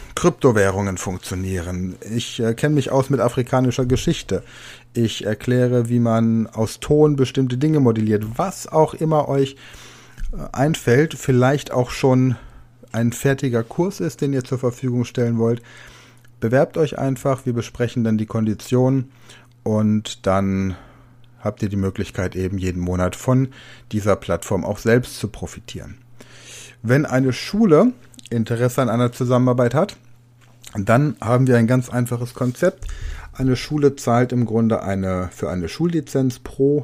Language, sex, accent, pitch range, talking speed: German, male, German, 110-130 Hz, 140 wpm